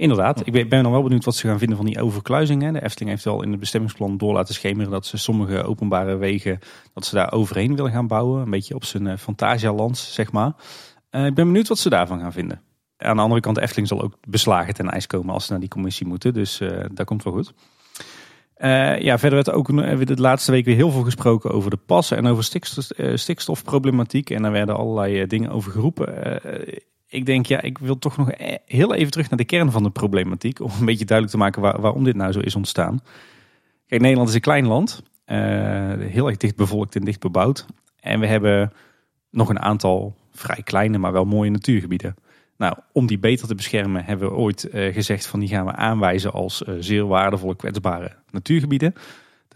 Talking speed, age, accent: 210 wpm, 30-49, Dutch